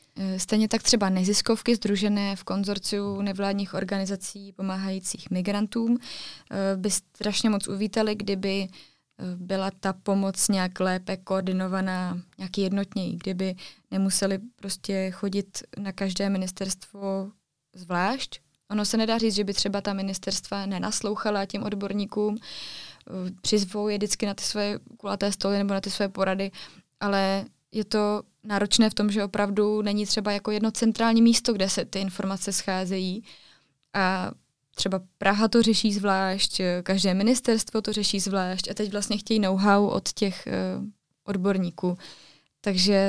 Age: 20-39